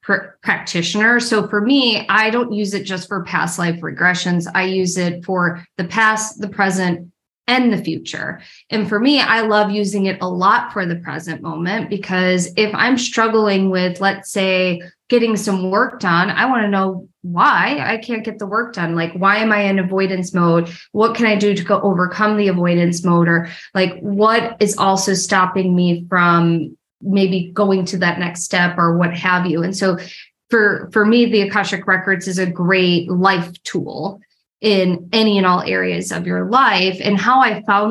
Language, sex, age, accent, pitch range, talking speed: English, female, 20-39, American, 180-210 Hz, 190 wpm